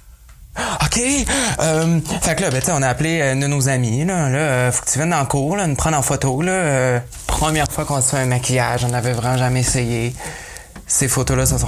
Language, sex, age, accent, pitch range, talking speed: French, male, 20-39, Canadian, 125-155 Hz, 235 wpm